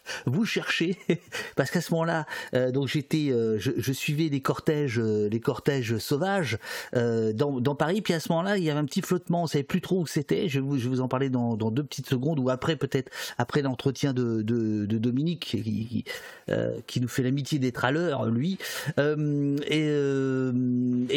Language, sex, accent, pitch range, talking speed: French, male, French, 125-160 Hz, 210 wpm